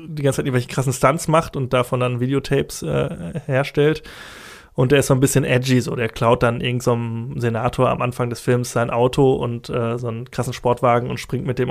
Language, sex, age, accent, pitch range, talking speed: German, male, 20-39, German, 120-140 Hz, 220 wpm